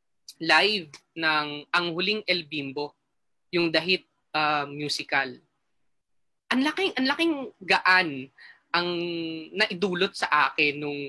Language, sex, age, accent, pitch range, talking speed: English, female, 20-39, Filipino, 160-230 Hz, 115 wpm